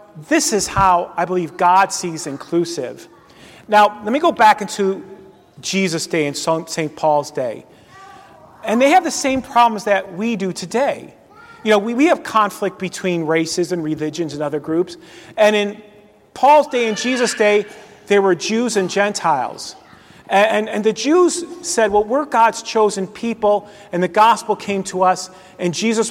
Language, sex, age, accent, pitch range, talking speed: English, male, 40-59, American, 180-225 Hz, 170 wpm